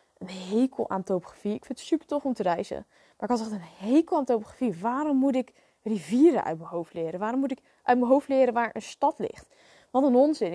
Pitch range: 210-255 Hz